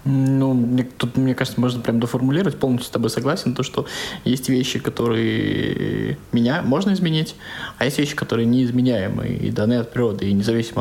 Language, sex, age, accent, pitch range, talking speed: Russian, male, 20-39, native, 110-140 Hz, 165 wpm